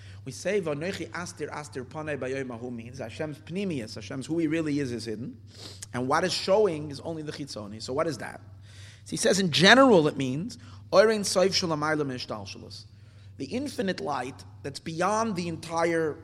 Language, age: English, 30-49